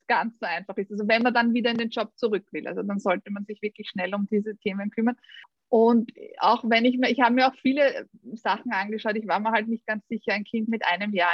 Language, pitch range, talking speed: German, 200-235 Hz, 260 wpm